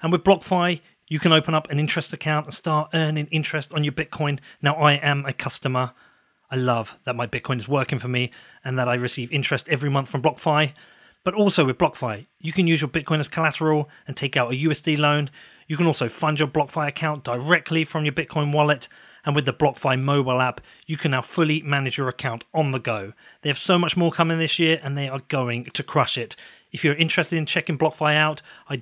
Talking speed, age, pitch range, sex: 225 wpm, 30-49, 130-160 Hz, male